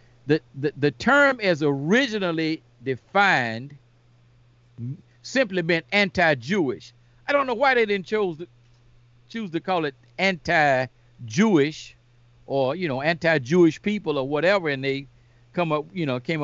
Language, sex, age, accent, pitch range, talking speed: English, male, 50-69, American, 125-165 Hz, 135 wpm